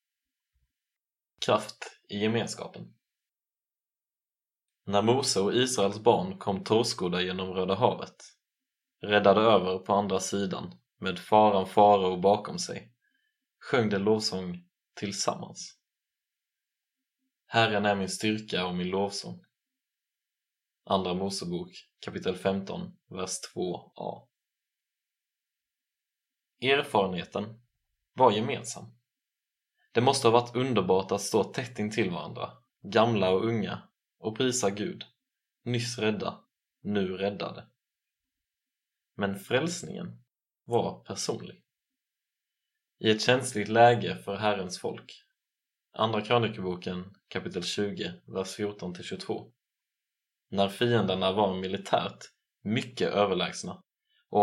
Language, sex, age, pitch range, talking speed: Swedish, male, 20-39, 95-115 Hz, 100 wpm